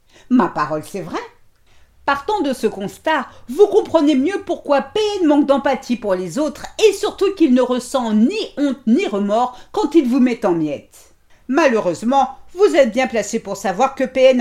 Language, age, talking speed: French, 50-69, 175 wpm